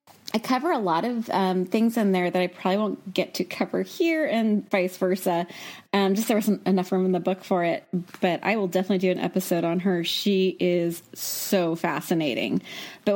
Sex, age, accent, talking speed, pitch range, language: female, 20-39, American, 205 wpm, 180-230 Hz, English